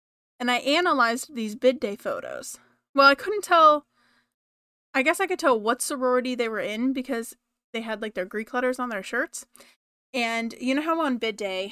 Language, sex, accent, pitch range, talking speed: English, female, American, 210-265 Hz, 195 wpm